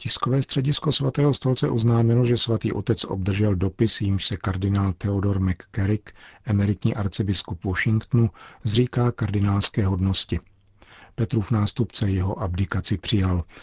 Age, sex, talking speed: 50-69, male, 120 wpm